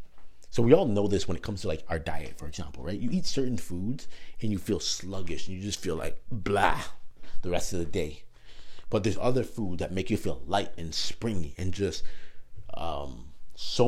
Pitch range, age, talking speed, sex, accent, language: 85-110 Hz, 30-49, 210 wpm, male, American, English